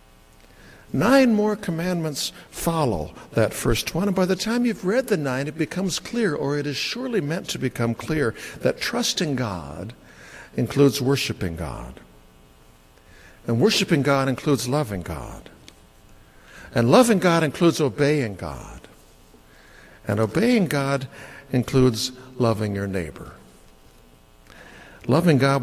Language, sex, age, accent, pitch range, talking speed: English, male, 60-79, American, 105-155 Hz, 125 wpm